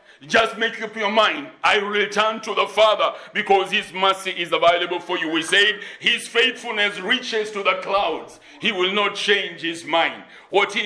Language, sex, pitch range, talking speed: English, male, 180-225 Hz, 195 wpm